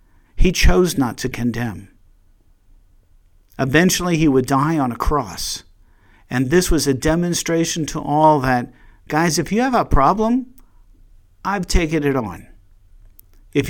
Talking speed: 135 wpm